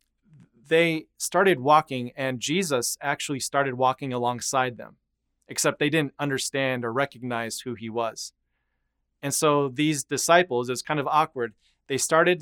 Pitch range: 120-155 Hz